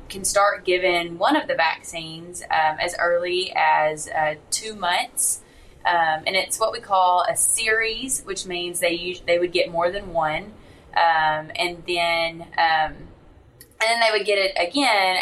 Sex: female